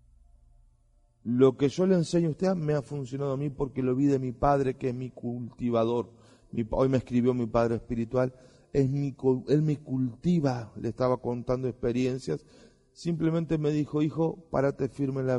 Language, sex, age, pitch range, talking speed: Spanish, male, 40-59, 115-145 Hz, 175 wpm